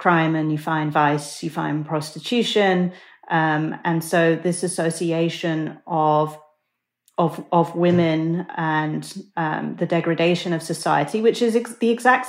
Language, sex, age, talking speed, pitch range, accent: English, female, 30-49, 135 wpm, 160-180 Hz, British